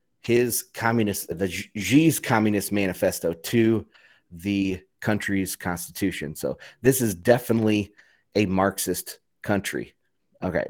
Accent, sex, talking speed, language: American, male, 100 wpm, English